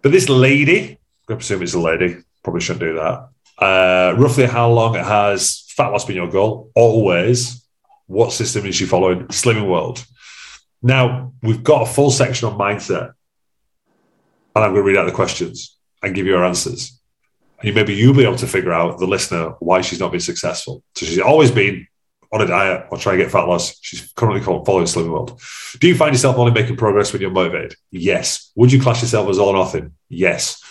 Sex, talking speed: male, 210 wpm